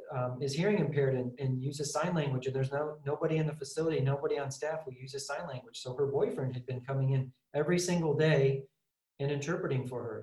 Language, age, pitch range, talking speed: English, 40-59, 130-150 Hz, 225 wpm